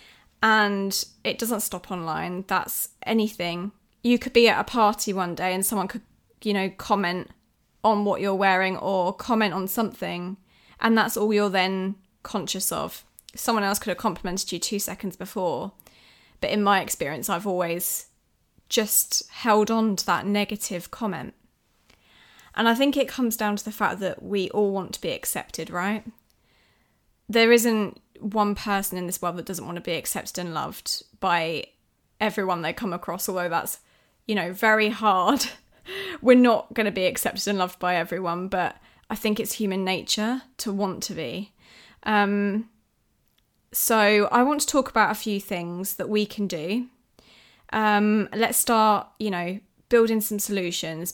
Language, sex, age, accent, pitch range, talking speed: English, female, 20-39, British, 185-230 Hz, 170 wpm